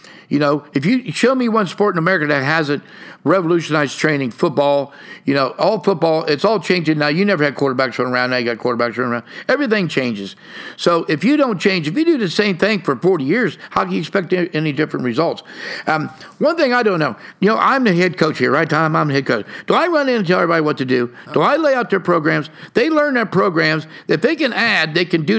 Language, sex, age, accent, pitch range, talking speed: English, male, 50-69, American, 155-210 Hz, 245 wpm